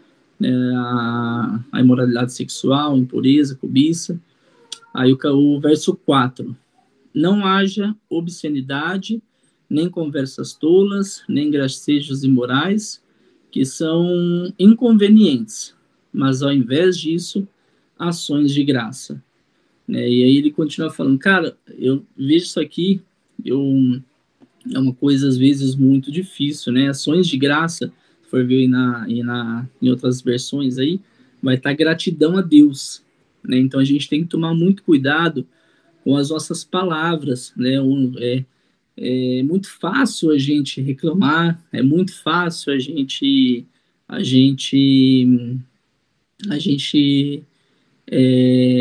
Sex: male